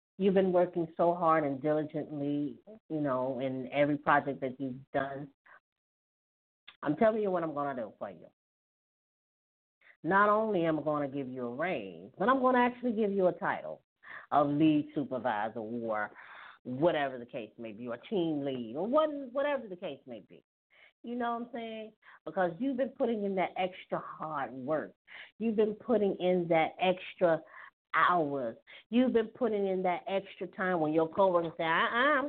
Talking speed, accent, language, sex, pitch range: 180 wpm, American, English, female, 150-220 Hz